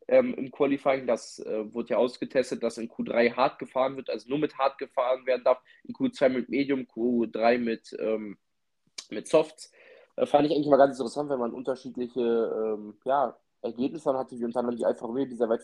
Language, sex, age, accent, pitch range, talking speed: German, male, 20-39, German, 120-135 Hz, 200 wpm